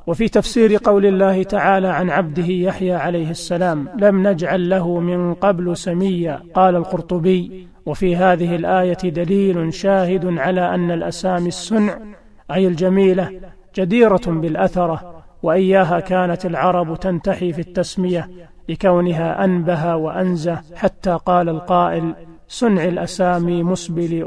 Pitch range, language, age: 165-185 Hz, Arabic, 40-59